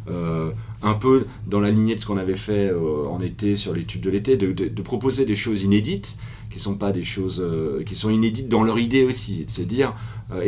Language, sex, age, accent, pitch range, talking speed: French, male, 40-59, French, 95-115 Hz, 240 wpm